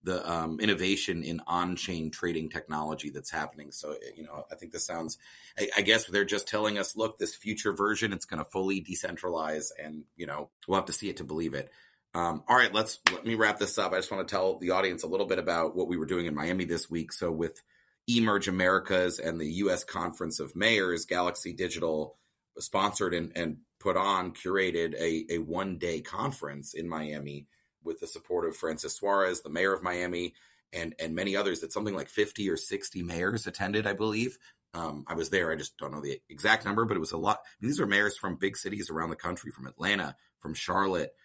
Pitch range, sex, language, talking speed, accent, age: 80-100 Hz, male, English, 220 wpm, American, 30-49